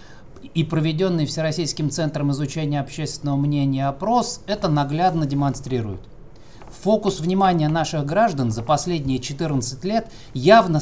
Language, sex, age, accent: Russian, male, 20-39, native